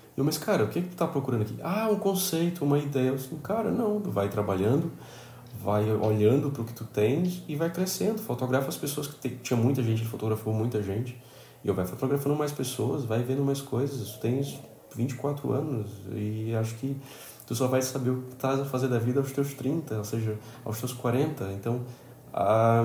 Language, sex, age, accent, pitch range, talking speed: Portuguese, male, 20-39, Brazilian, 115-140 Hz, 210 wpm